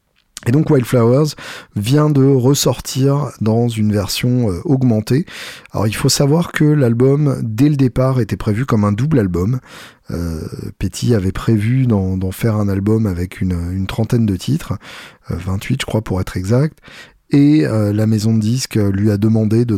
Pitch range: 95-125 Hz